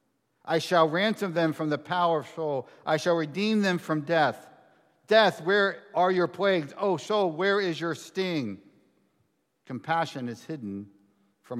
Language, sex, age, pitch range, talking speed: English, male, 60-79, 130-175 Hz, 155 wpm